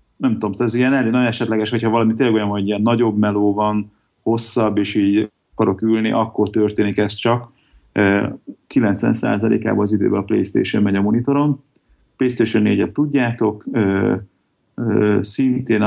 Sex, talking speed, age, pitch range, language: male, 140 wpm, 30-49, 100-115 Hz, Hungarian